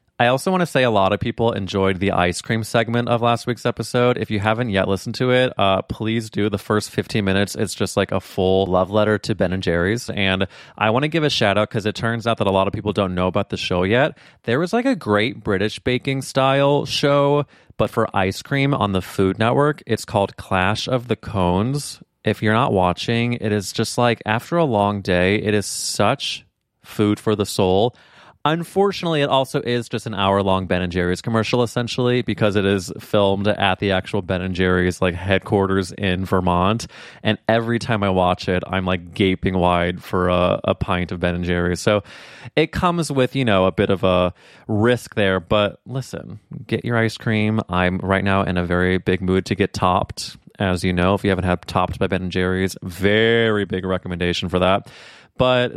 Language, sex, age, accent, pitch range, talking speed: English, male, 30-49, American, 95-120 Hz, 215 wpm